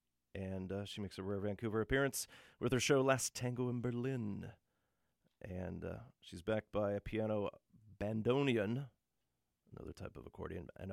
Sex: male